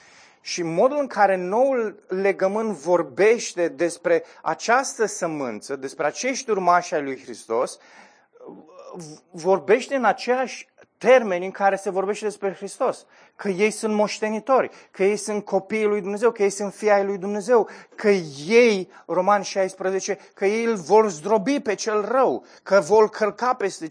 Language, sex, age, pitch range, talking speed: Romanian, male, 30-49, 175-215 Hz, 145 wpm